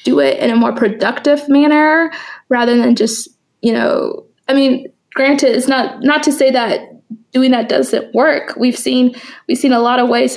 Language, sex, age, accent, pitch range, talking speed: English, female, 20-39, American, 235-275 Hz, 190 wpm